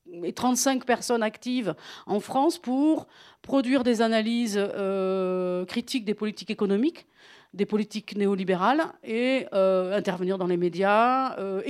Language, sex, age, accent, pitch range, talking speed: French, female, 40-59, French, 195-245 Hz, 125 wpm